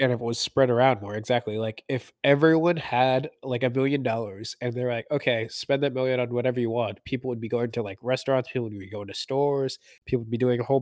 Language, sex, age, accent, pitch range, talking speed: English, male, 20-39, American, 115-130 Hz, 250 wpm